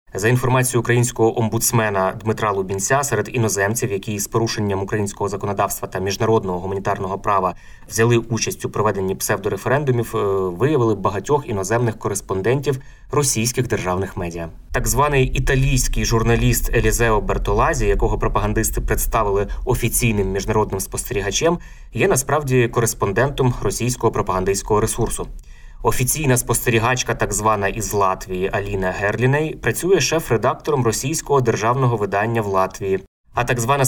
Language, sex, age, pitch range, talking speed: Ukrainian, male, 20-39, 100-125 Hz, 115 wpm